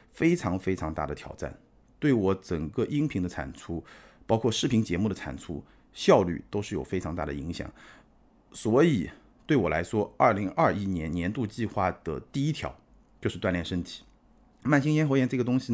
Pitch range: 85-120 Hz